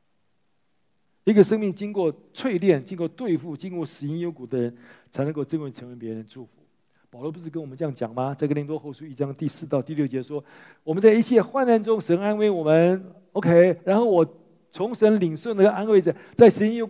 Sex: male